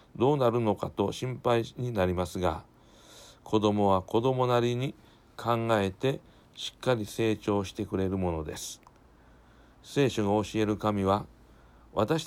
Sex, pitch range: male, 100-125 Hz